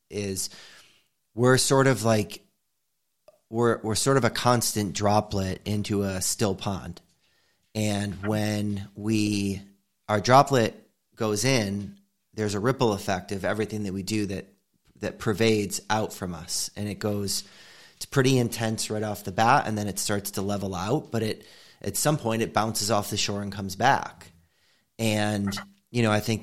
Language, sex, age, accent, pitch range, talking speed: English, male, 30-49, American, 100-135 Hz, 165 wpm